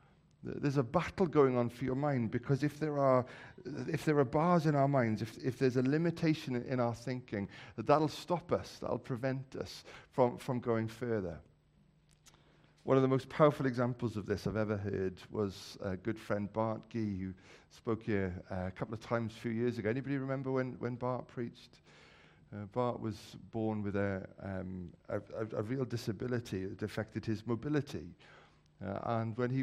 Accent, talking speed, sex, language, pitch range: British, 190 wpm, male, English, 105-130 Hz